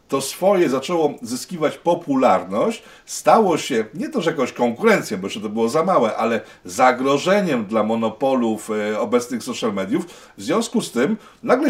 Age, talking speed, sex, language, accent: 50-69, 150 wpm, male, Polish, native